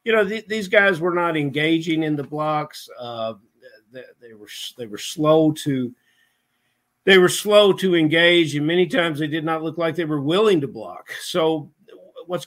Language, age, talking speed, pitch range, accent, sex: English, 50-69, 190 wpm, 125-165 Hz, American, male